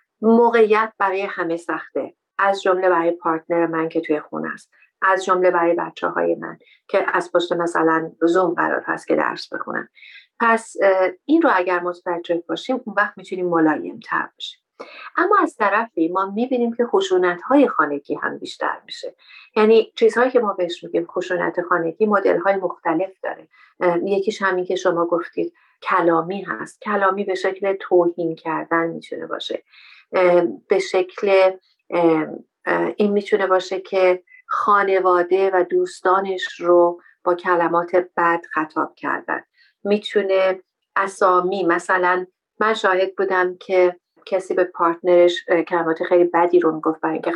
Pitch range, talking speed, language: 170-205 Hz, 135 wpm, Persian